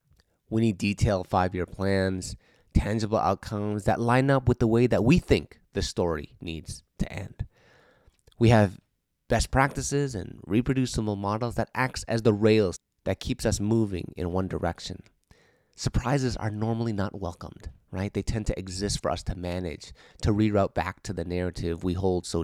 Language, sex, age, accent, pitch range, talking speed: English, male, 30-49, American, 95-120 Hz, 170 wpm